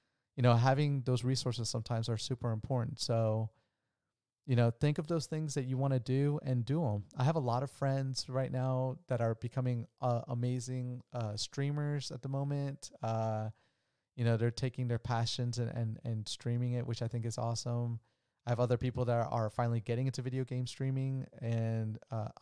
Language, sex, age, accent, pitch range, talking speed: English, male, 30-49, American, 115-130 Hz, 195 wpm